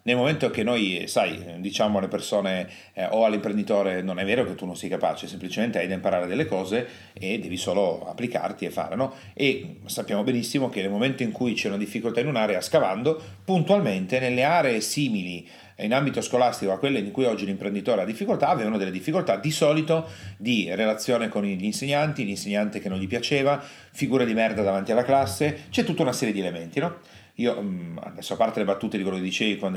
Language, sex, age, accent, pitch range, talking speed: Italian, male, 40-59, native, 95-145 Hz, 200 wpm